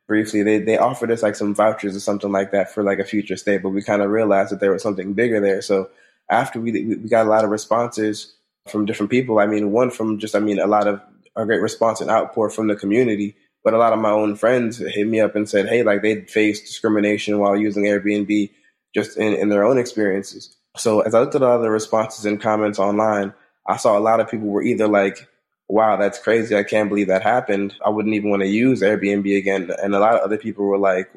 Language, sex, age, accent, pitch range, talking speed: English, male, 20-39, American, 100-110 Hz, 250 wpm